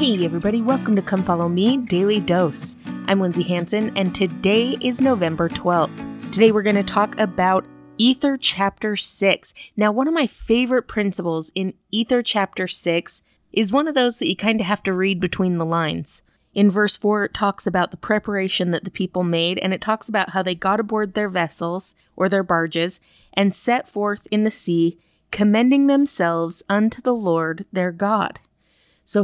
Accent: American